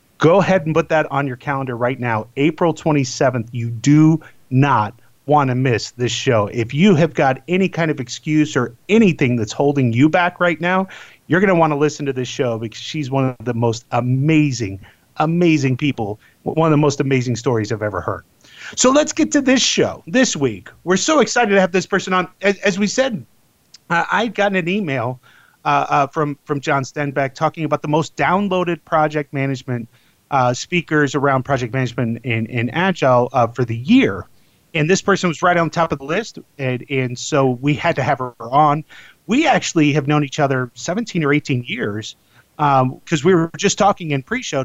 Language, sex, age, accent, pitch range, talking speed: English, male, 30-49, American, 125-170 Hz, 200 wpm